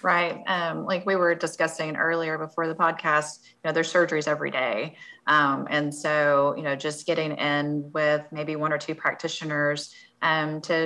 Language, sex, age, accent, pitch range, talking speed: English, female, 20-39, American, 150-160 Hz, 175 wpm